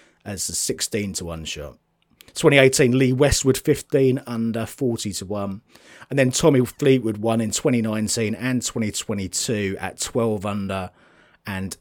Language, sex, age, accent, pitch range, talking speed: English, male, 30-49, British, 90-115 Hz, 135 wpm